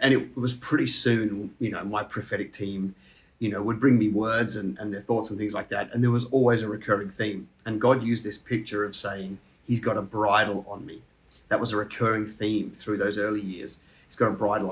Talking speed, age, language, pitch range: 230 wpm, 30-49, English, 105-115 Hz